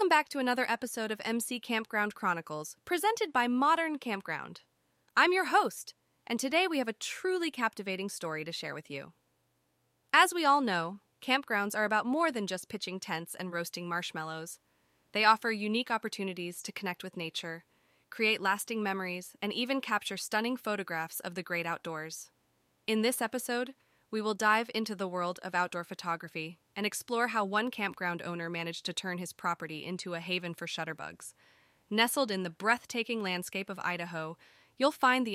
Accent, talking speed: American, 170 wpm